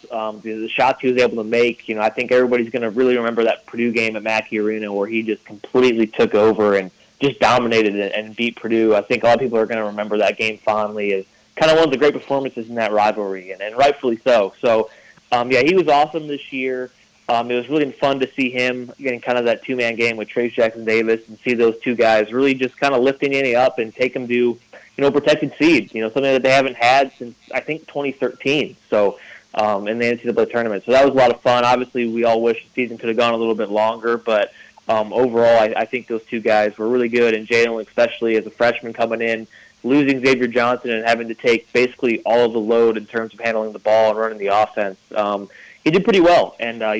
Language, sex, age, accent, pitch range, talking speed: English, male, 30-49, American, 110-130 Hz, 255 wpm